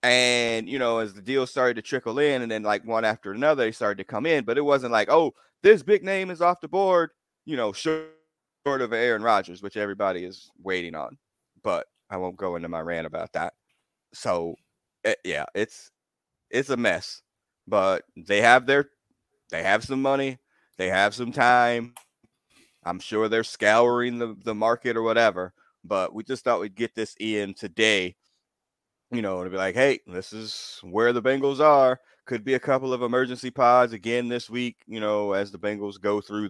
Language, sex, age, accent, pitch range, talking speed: English, male, 30-49, American, 105-135 Hz, 195 wpm